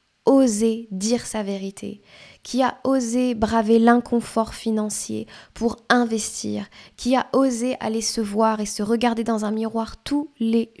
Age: 10-29